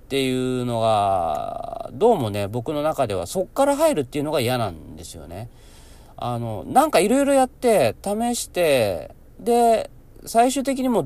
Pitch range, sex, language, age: 110-185 Hz, male, Japanese, 40-59